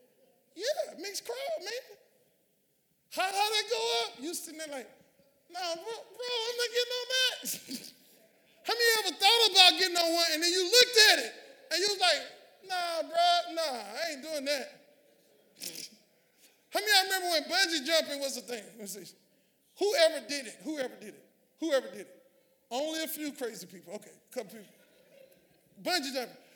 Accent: American